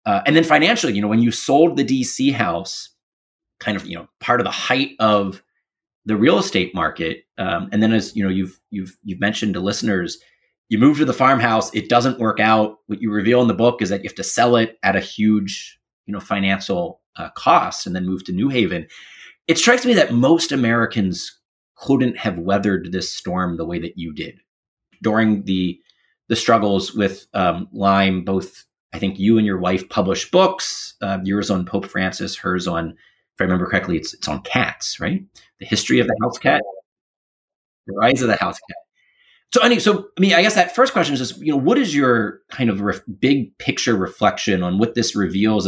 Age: 30-49